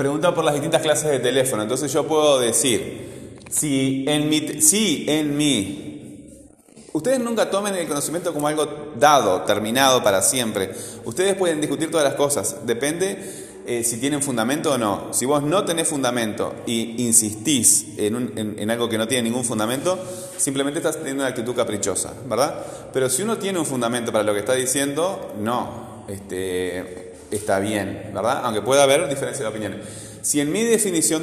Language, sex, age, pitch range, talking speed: Spanish, male, 30-49, 110-145 Hz, 170 wpm